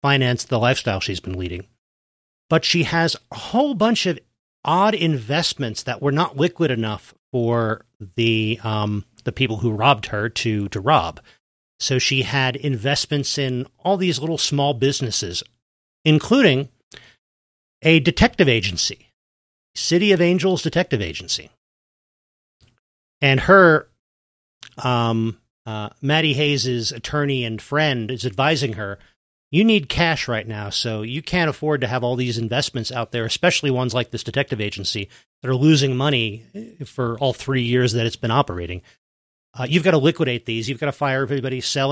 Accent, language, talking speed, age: American, English, 155 wpm, 40-59